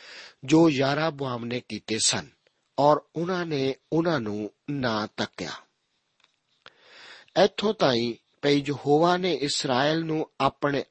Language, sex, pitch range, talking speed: Punjabi, male, 120-155 Hz, 120 wpm